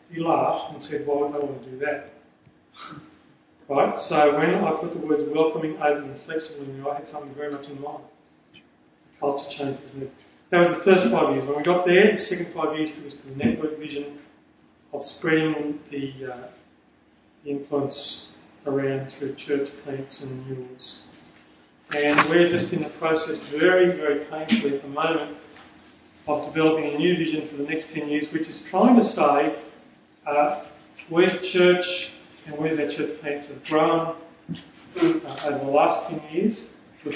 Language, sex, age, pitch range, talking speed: English, male, 40-59, 140-160 Hz, 180 wpm